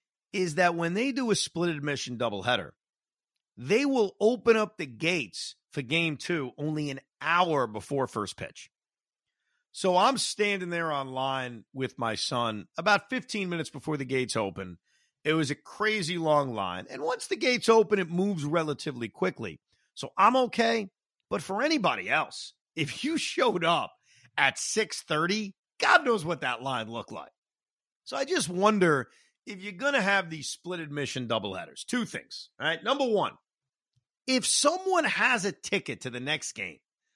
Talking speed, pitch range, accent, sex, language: 165 wpm, 145-225 Hz, American, male, English